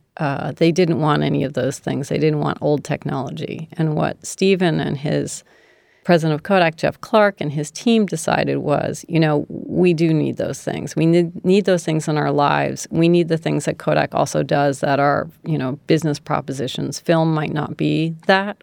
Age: 40-59